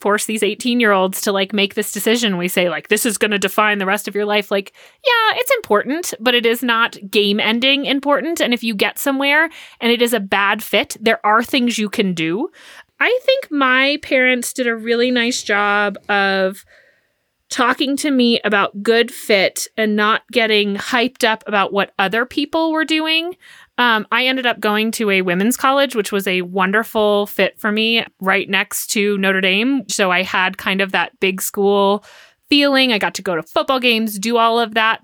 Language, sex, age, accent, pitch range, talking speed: English, female, 30-49, American, 205-270 Hz, 205 wpm